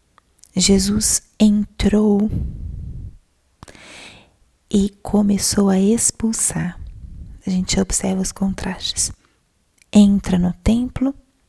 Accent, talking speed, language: Brazilian, 75 wpm, Portuguese